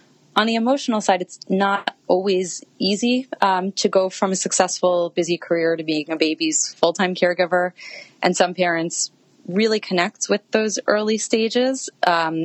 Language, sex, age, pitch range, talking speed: English, female, 30-49, 160-195 Hz, 155 wpm